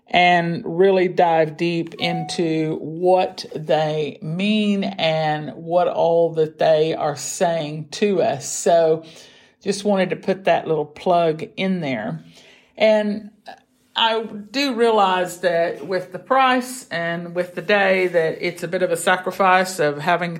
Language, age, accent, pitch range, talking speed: English, 50-69, American, 165-195 Hz, 140 wpm